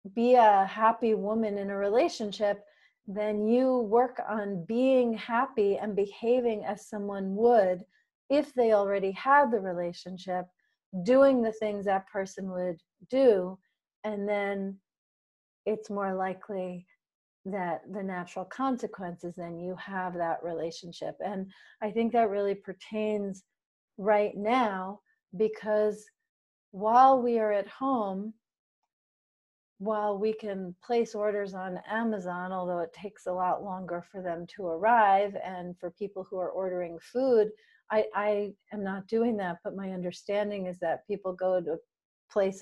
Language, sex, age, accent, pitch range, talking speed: English, female, 40-59, American, 185-225 Hz, 140 wpm